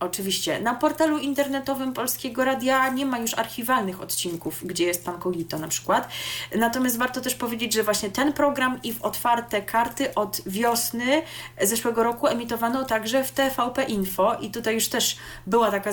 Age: 20-39